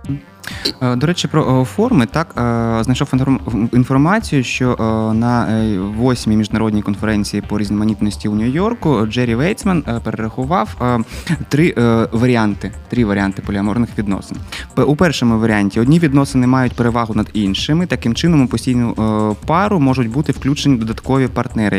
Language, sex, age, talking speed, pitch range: Ukrainian, male, 20-39, 120 wpm, 105-140 Hz